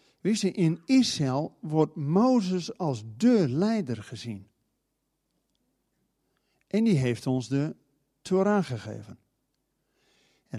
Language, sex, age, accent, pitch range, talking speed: Dutch, male, 50-69, Dutch, 125-180 Hz, 90 wpm